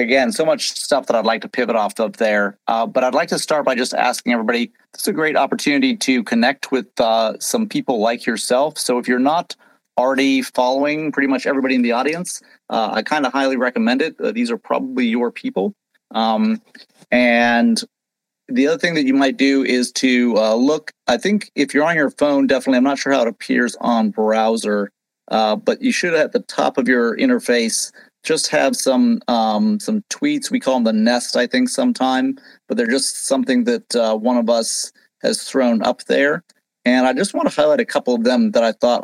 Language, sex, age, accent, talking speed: English, male, 40-59, American, 215 wpm